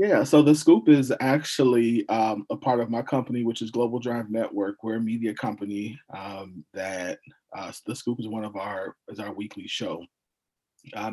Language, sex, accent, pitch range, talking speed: English, male, American, 110-135 Hz, 190 wpm